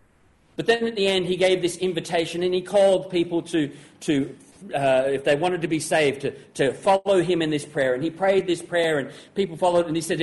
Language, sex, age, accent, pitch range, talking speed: English, male, 40-59, Australian, 135-185 Hz, 240 wpm